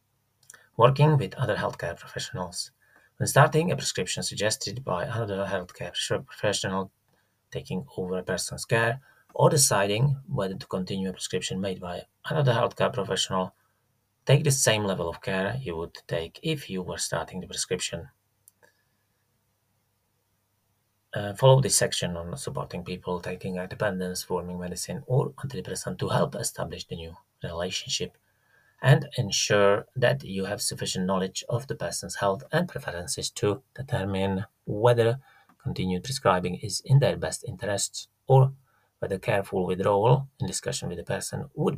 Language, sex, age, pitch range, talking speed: English, male, 30-49, 95-130 Hz, 140 wpm